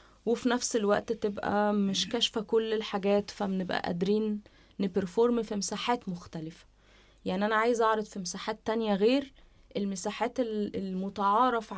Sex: female